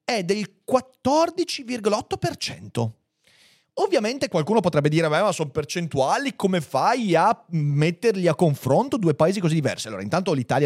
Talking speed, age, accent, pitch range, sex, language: 130 wpm, 30-49, native, 125-185 Hz, male, Italian